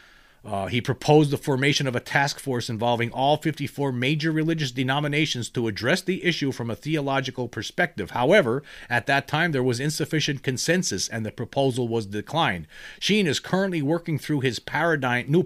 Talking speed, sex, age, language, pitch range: 165 wpm, male, 40-59, English, 110-155 Hz